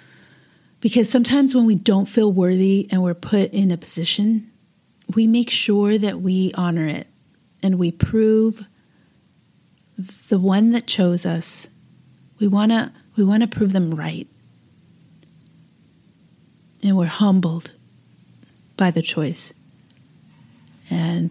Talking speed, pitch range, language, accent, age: 120 wpm, 175-215 Hz, English, American, 30-49